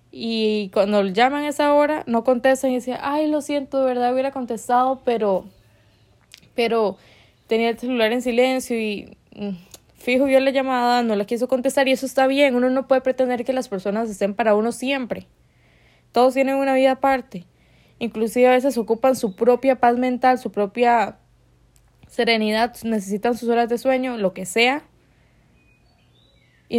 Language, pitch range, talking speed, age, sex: Spanish, 215-260 Hz, 165 wpm, 10-29, female